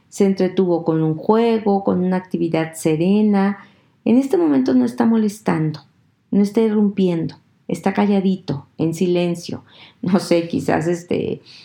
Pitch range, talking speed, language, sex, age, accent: 165-215 Hz, 135 wpm, Spanish, female, 40-59, Mexican